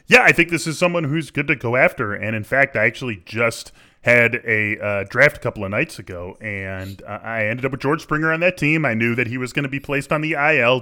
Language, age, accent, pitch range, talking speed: English, 20-39, American, 115-145 Hz, 270 wpm